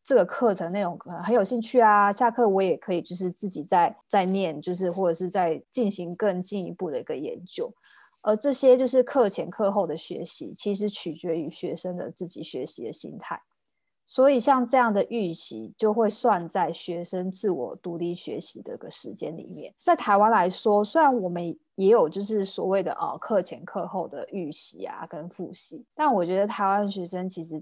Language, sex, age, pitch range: Chinese, female, 20-39, 180-225 Hz